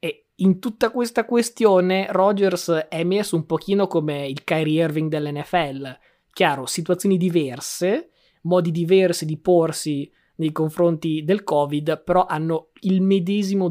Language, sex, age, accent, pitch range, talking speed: Italian, male, 20-39, native, 150-175 Hz, 125 wpm